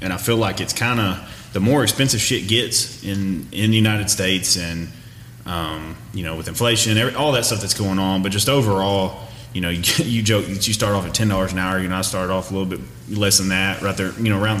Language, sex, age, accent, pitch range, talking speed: English, male, 30-49, American, 100-120 Hz, 255 wpm